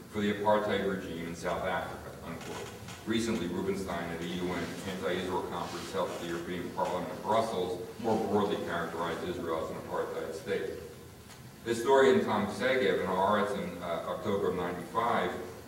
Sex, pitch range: male, 90-110 Hz